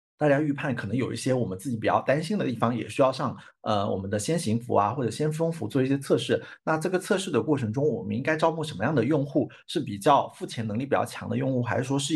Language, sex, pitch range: Chinese, male, 115-150 Hz